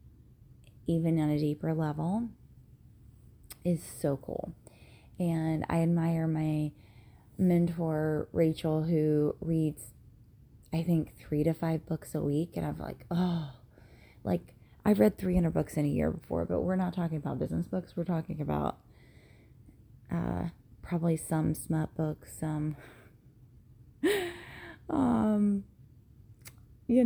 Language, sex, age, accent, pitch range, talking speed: English, female, 20-39, American, 120-175 Hz, 120 wpm